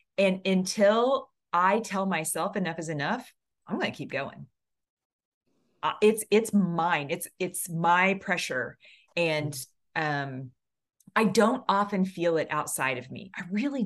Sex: female